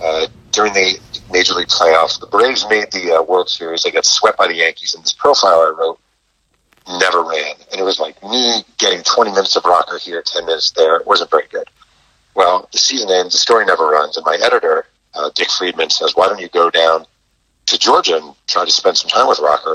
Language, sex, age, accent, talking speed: English, male, 40-59, American, 225 wpm